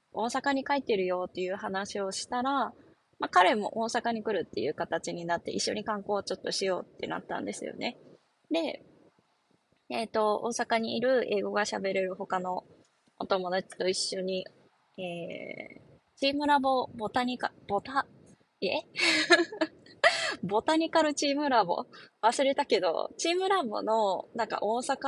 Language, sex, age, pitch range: Japanese, female, 20-39, 190-275 Hz